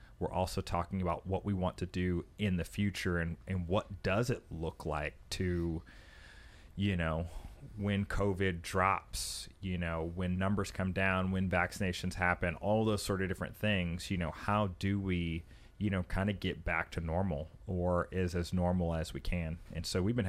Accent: American